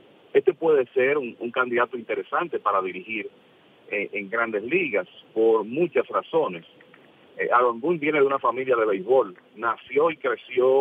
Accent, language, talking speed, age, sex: Venezuelan, English, 155 wpm, 40-59, male